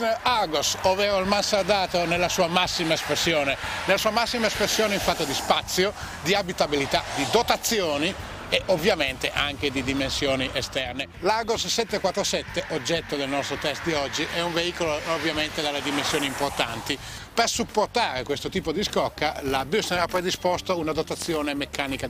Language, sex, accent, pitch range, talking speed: Italian, male, native, 135-185 Hz, 145 wpm